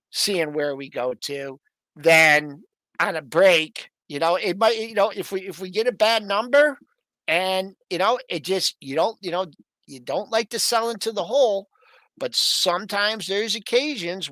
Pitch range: 155-205 Hz